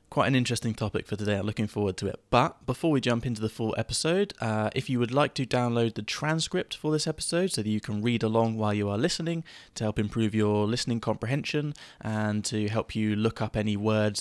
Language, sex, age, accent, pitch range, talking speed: English, male, 20-39, British, 105-130 Hz, 230 wpm